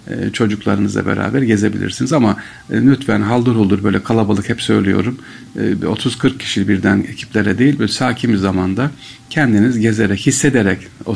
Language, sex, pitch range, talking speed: Turkish, male, 100-125 Hz, 130 wpm